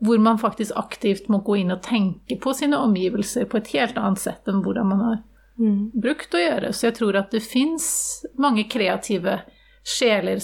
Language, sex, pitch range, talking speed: Swedish, female, 205-245 Hz, 190 wpm